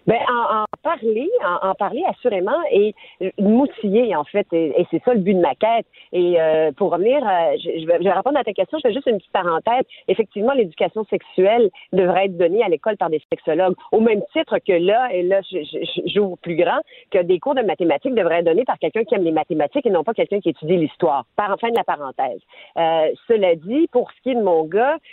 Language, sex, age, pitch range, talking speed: French, female, 40-59, 175-275 Hz, 235 wpm